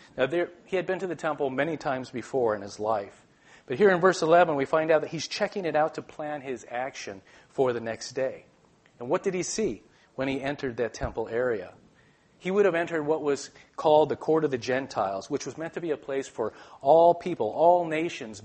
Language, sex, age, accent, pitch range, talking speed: English, male, 40-59, American, 130-160 Hz, 225 wpm